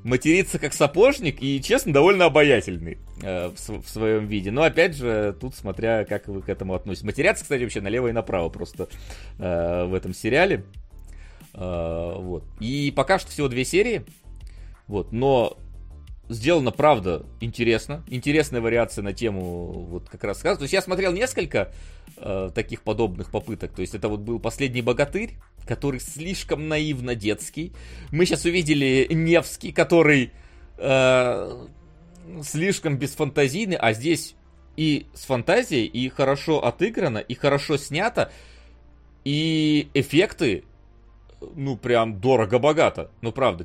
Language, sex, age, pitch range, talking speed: Russian, male, 30-49, 95-150 Hz, 135 wpm